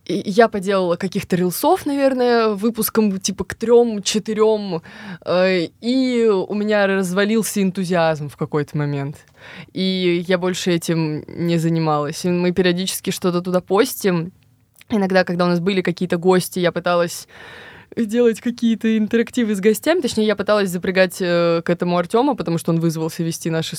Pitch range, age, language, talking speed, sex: 170-210 Hz, 20-39, Russian, 140 wpm, female